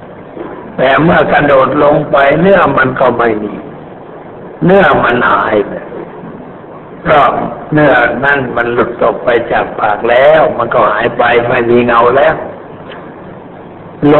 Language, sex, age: Thai, male, 60-79